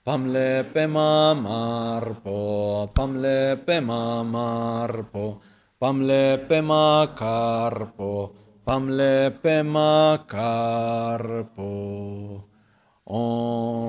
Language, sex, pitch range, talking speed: Italian, male, 110-135 Hz, 70 wpm